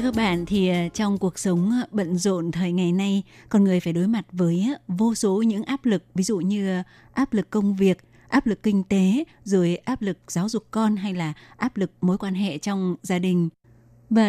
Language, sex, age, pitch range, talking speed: Vietnamese, female, 20-39, 175-220 Hz, 215 wpm